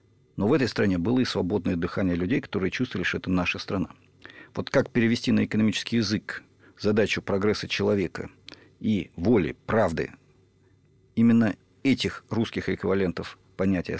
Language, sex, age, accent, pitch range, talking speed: Russian, male, 50-69, native, 90-115 Hz, 135 wpm